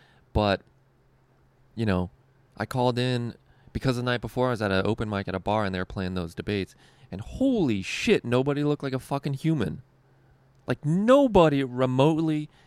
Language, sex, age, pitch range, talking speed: English, male, 20-39, 100-135 Hz, 175 wpm